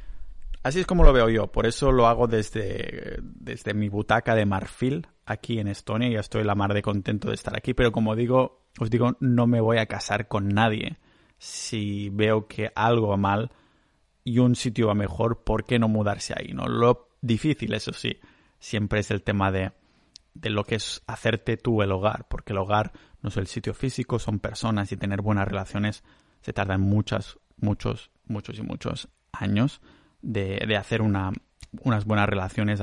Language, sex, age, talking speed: Spanish, male, 30-49, 190 wpm